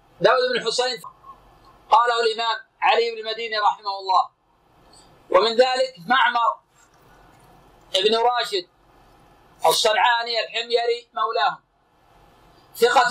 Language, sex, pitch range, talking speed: Arabic, male, 225-265 Hz, 85 wpm